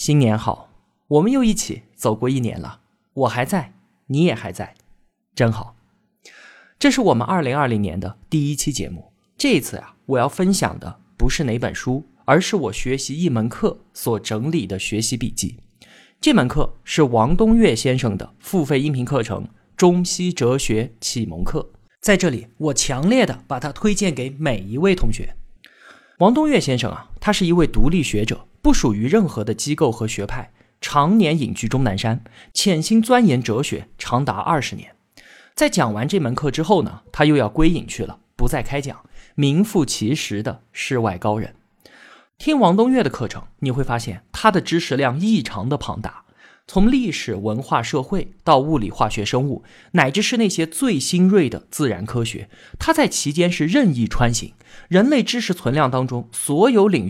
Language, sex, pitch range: Chinese, male, 110-180 Hz